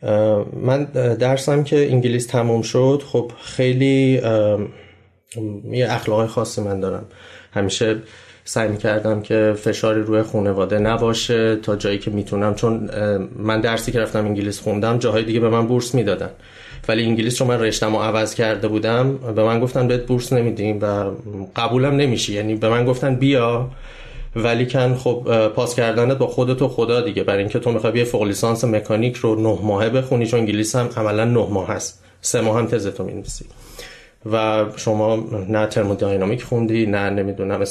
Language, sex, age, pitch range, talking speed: Persian, male, 30-49, 110-130 Hz, 165 wpm